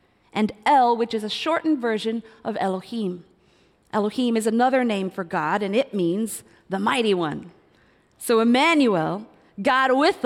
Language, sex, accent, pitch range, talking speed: English, female, American, 220-310 Hz, 145 wpm